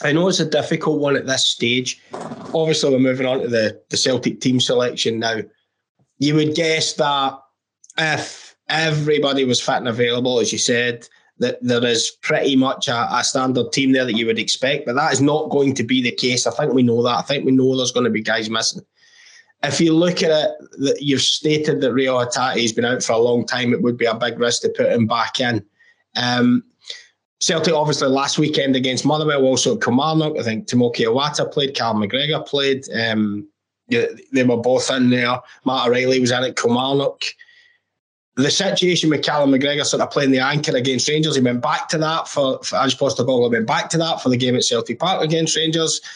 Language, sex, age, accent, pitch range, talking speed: English, male, 20-39, British, 125-155 Hz, 215 wpm